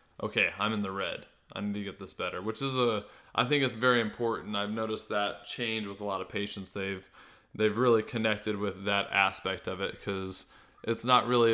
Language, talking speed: English, 215 wpm